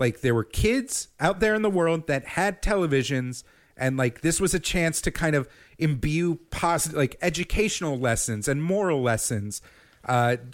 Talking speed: 170 wpm